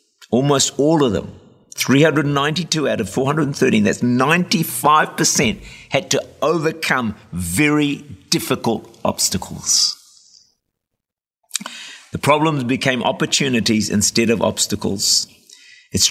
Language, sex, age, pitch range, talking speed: English, male, 50-69, 110-145 Hz, 90 wpm